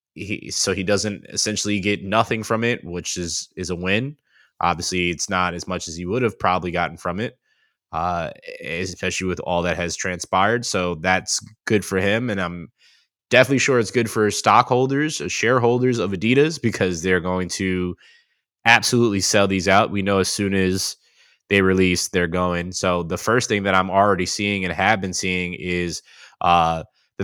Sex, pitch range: male, 90-105 Hz